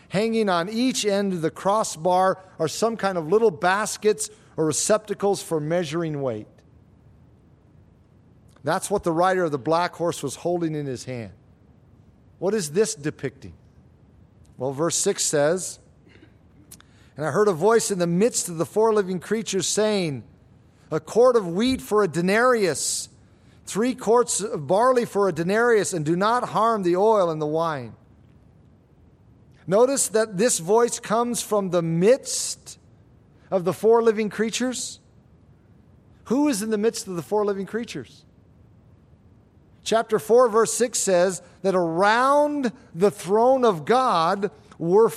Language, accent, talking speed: English, American, 145 wpm